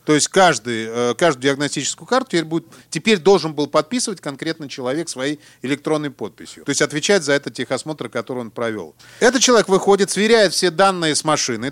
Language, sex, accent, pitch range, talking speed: Russian, male, native, 145-195 Hz, 165 wpm